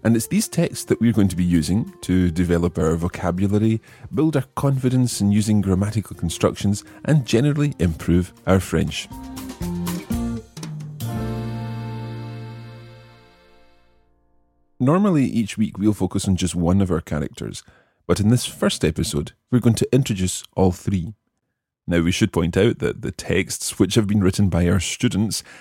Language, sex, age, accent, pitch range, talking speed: English, male, 30-49, British, 90-120 Hz, 150 wpm